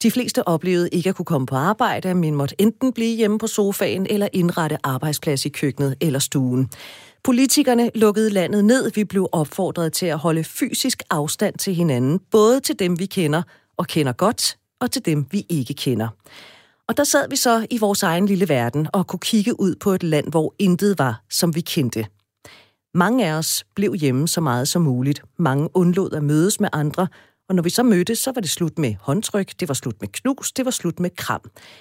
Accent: native